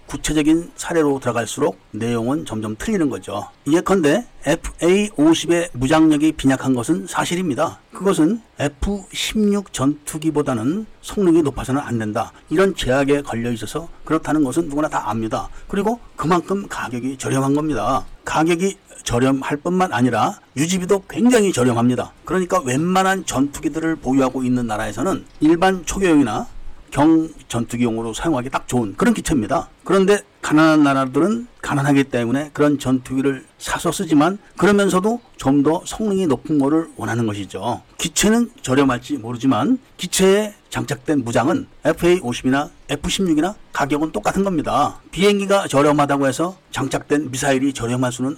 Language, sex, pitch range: Korean, male, 130-185 Hz